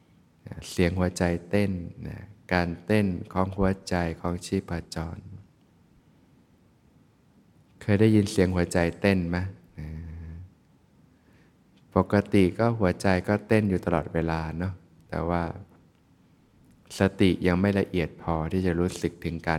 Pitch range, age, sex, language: 85-100 Hz, 20-39, male, Thai